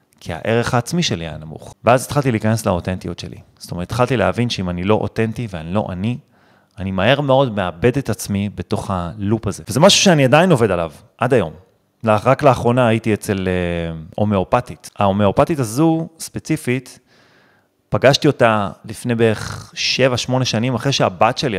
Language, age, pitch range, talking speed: Hebrew, 30-49, 100-135 Hz, 160 wpm